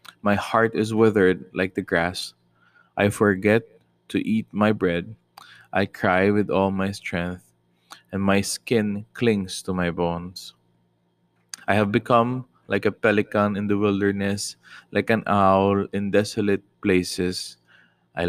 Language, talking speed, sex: English, 140 wpm, male